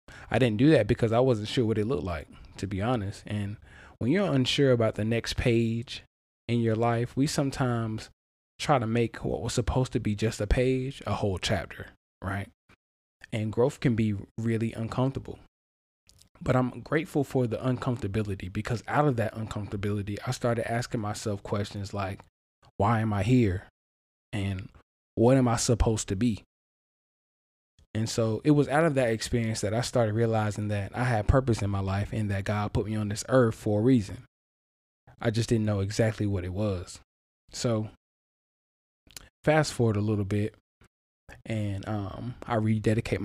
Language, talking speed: English, 175 wpm